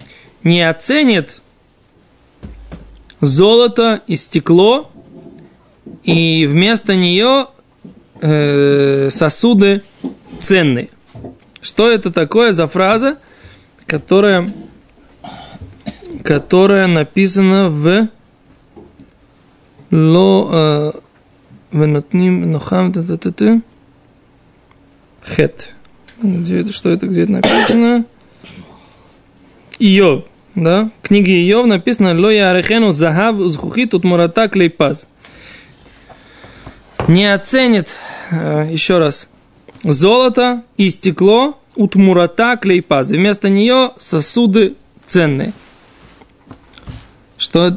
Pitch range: 165-215 Hz